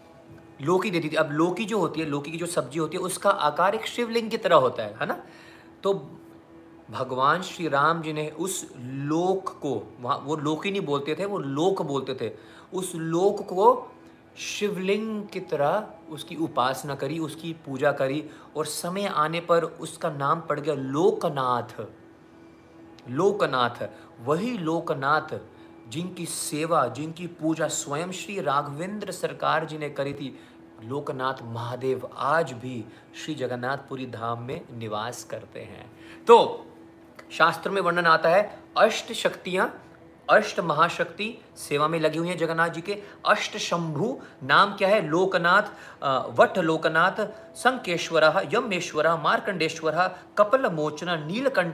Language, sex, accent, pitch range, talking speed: Hindi, male, native, 140-180 Hz, 145 wpm